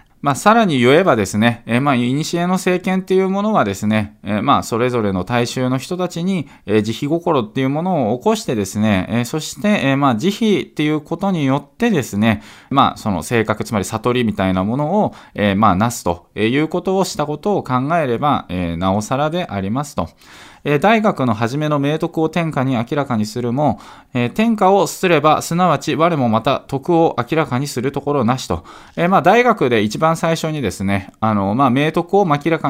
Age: 20-39